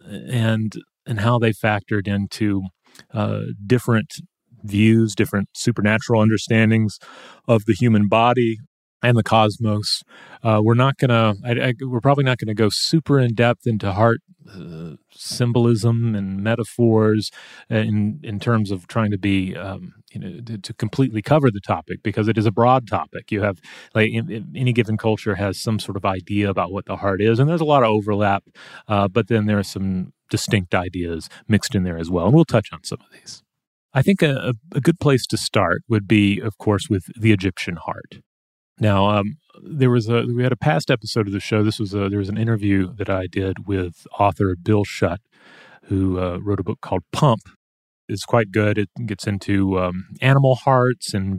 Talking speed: 185 wpm